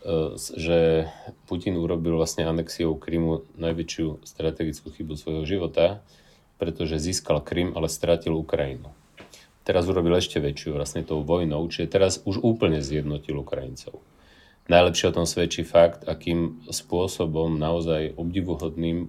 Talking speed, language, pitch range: 125 wpm, Slovak, 80-90 Hz